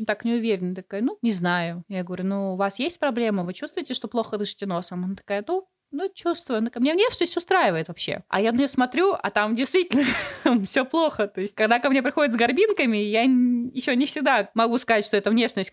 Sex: female